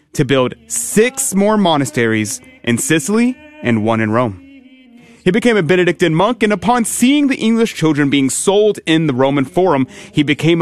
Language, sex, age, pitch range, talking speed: English, male, 30-49, 130-190 Hz, 170 wpm